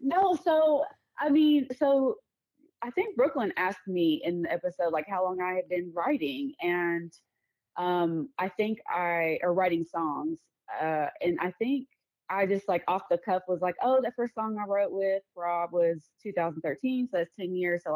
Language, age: English, 20-39